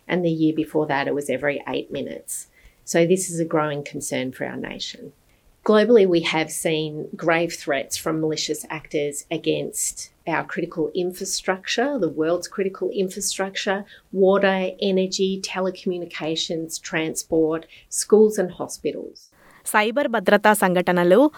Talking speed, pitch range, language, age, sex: 130 wpm, 175-230 Hz, Telugu, 30-49, female